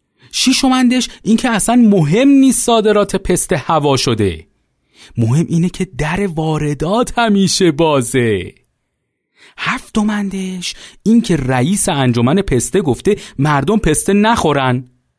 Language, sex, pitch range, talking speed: Persian, male, 140-210 Hz, 100 wpm